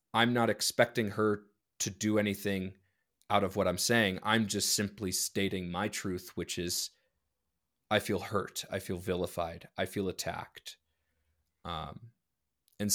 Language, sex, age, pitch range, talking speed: English, male, 20-39, 95-120 Hz, 145 wpm